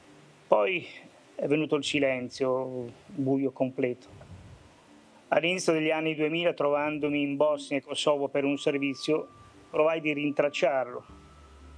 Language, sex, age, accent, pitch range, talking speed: Italian, male, 30-49, native, 130-150 Hz, 110 wpm